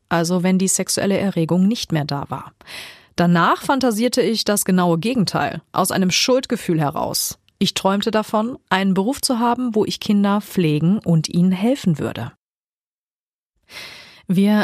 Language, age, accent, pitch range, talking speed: German, 40-59, German, 175-220 Hz, 145 wpm